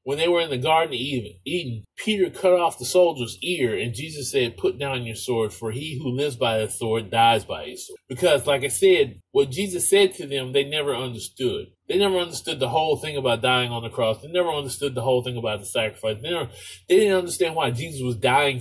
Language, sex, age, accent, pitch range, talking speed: English, male, 20-39, American, 115-170 Hz, 230 wpm